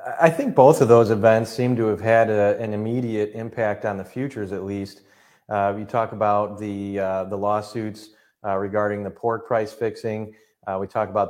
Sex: male